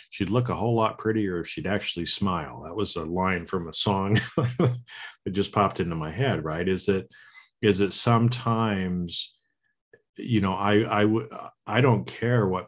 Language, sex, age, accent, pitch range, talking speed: English, male, 50-69, American, 85-105 Hz, 185 wpm